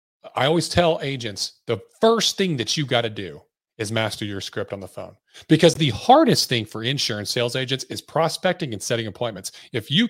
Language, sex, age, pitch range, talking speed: English, male, 30-49, 115-165 Hz, 200 wpm